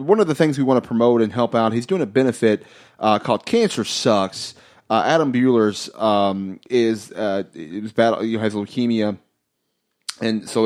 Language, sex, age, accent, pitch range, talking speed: English, male, 30-49, American, 105-125 Hz, 175 wpm